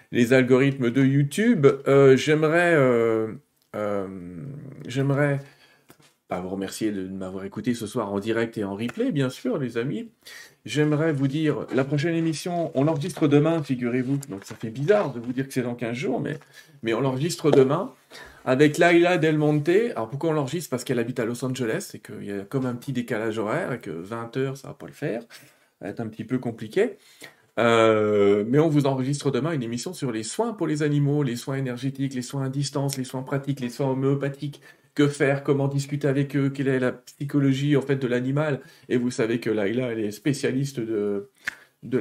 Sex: male